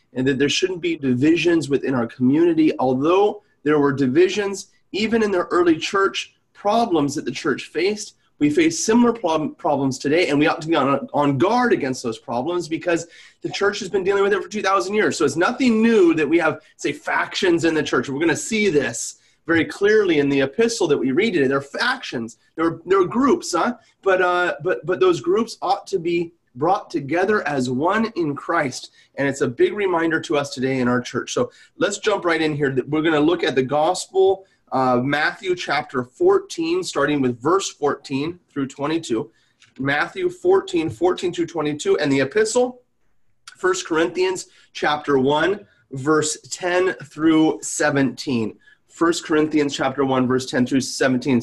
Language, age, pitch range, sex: English, 30-49, 140-210 Hz, male